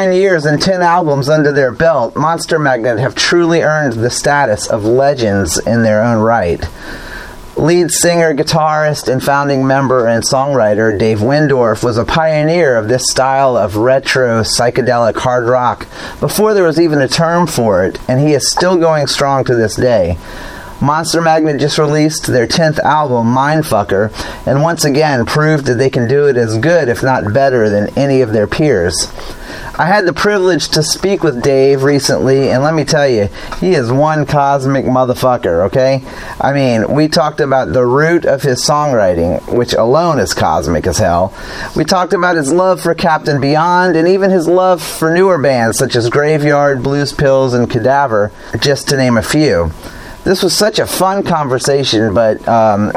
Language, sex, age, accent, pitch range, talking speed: English, male, 30-49, American, 125-160 Hz, 175 wpm